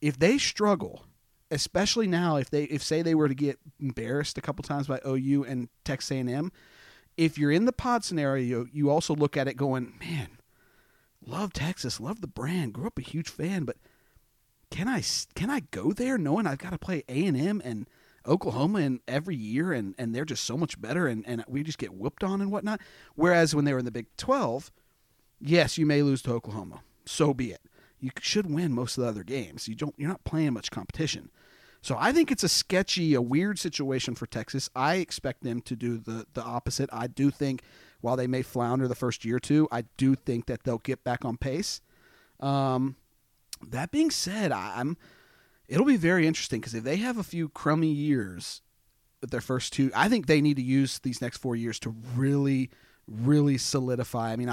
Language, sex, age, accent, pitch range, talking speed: English, male, 40-59, American, 120-160 Hz, 205 wpm